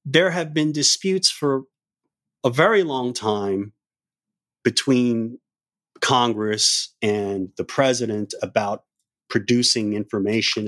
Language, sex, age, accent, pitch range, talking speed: English, male, 30-49, American, 105-140 Hz, 95 wpm